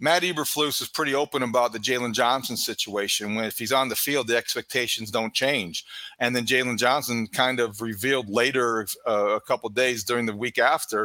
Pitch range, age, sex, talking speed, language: 125-165 Hz, 40-59, male, 200 wpm, English